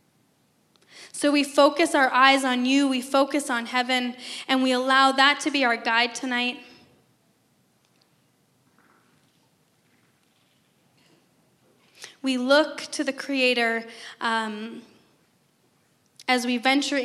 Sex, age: female, 10-29